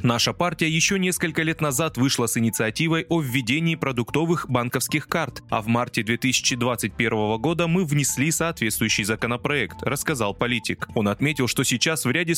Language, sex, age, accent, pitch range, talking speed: Russian, male, 20-39, native, 115-160 Hz, 150 wpm